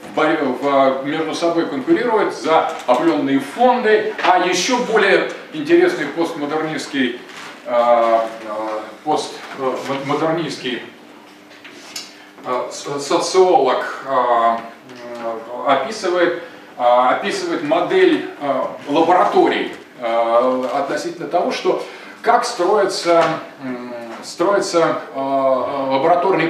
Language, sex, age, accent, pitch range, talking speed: Russian, male, 20-39, native, 130-200 Hz, 55 wpm